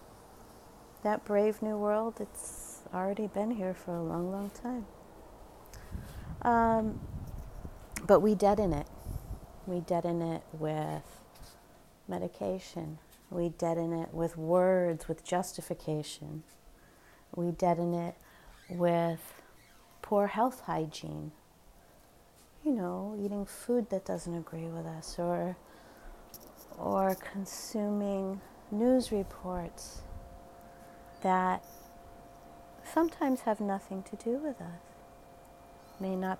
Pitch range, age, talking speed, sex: 160-210 Hz, 40-59, 100 wpm, female